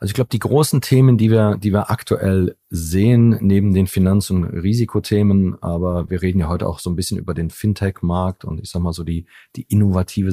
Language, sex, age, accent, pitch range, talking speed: German, male, 30-49, German, 90-110 Hz, 215 wpm